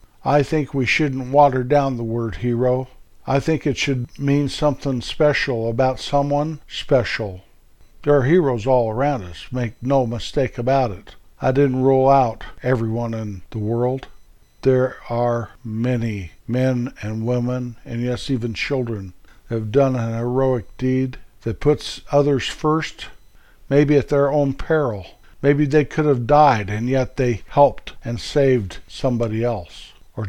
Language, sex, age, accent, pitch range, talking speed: English, male, 60-79, American, 115-135 Hz, 150 wpm